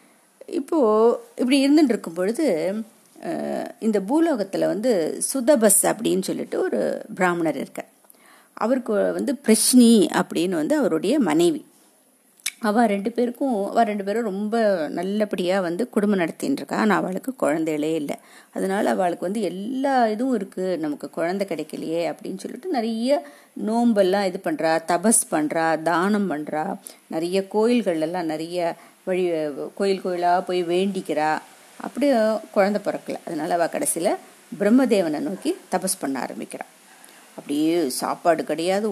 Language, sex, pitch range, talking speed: Tamil, female, 180-250 Hz, 115 wpm